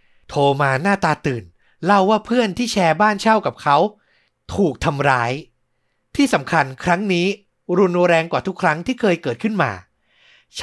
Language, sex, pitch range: Thai, male, 145-220 Hz